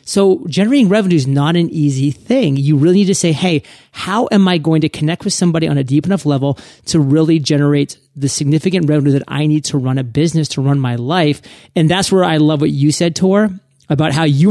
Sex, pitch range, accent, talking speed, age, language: male, 140-175 Hz, American, 230 wpm, 30-49, English